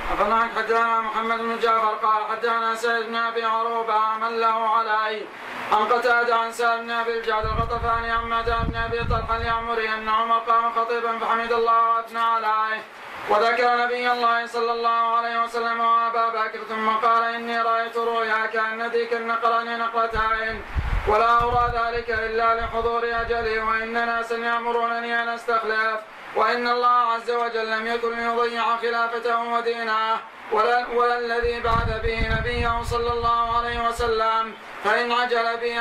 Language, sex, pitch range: Arabic, male, 225-235 Hz